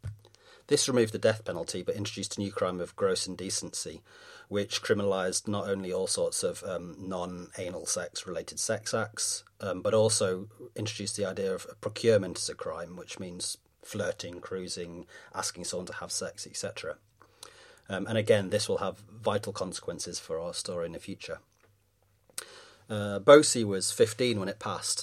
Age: 30-49